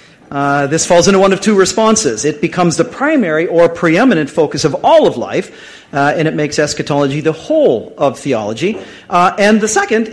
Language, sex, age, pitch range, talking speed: English, male, 40-59, 145-190 Hz, 190 wpm